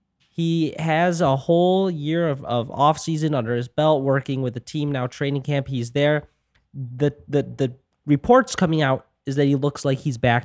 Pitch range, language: 125-155 Hz, English